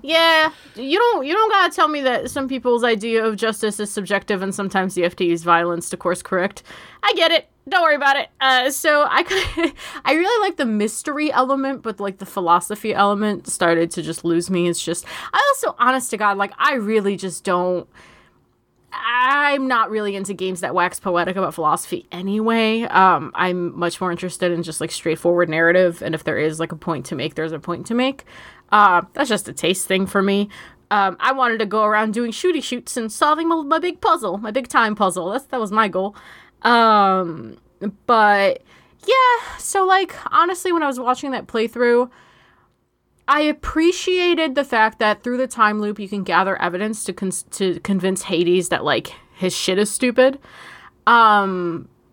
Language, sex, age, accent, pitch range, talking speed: English, female, 20-39, American, 185-270 Hz, 195 wpm